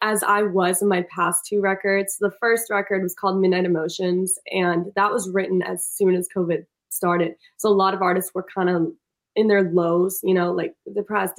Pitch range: 185-225 Hz